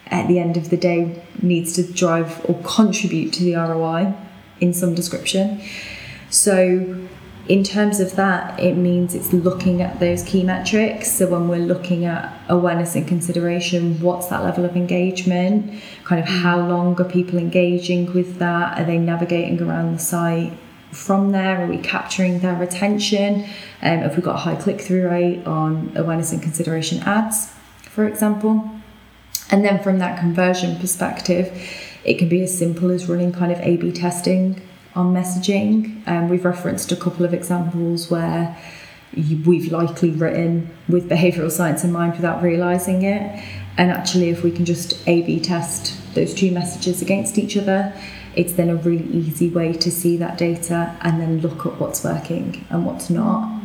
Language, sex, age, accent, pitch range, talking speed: English, female, 10-29, British, 170-185 Hz, 170 wpm